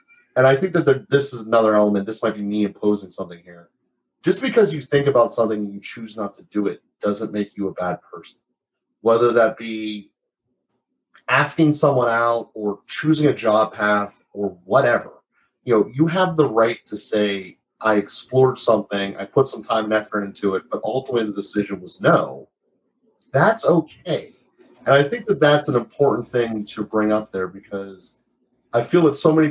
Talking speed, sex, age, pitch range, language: 185 wpm, male, 30-49, 105-135 Hz, English